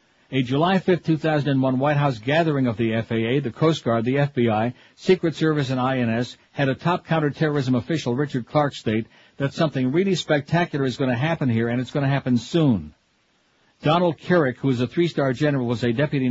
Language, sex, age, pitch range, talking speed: English, male, 60-79, 125-150 Hz, 190 wpm